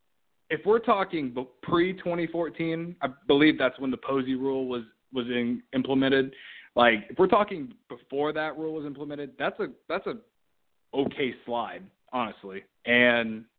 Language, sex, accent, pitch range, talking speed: English, male, American, 115-150 Hz, 140 wpm